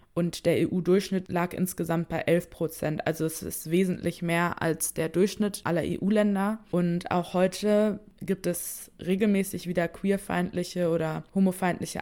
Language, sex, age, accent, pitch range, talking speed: German, female, 20-39, German, 165-185 Hz, 140 wpm